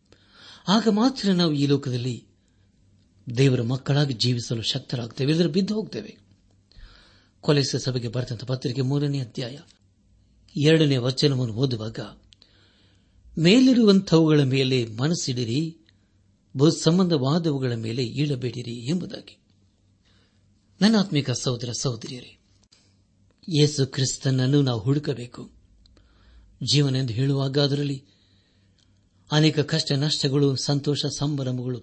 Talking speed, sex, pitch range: 75 wpm, male, 100-145 Hz